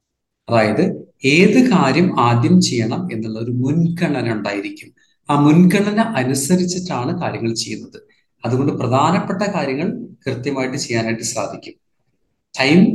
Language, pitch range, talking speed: Malayalam, 125-185 Hz, 95 wpm